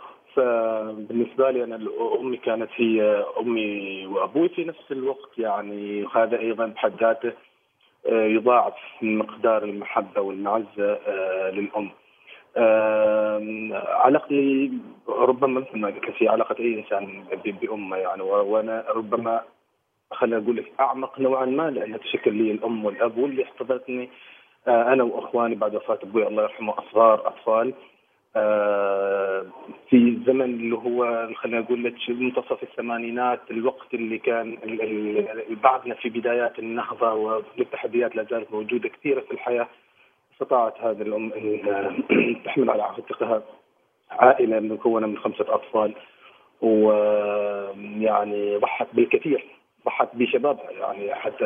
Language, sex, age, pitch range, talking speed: Arabic, male, 30-49, 105-120 Hz, 115 wpm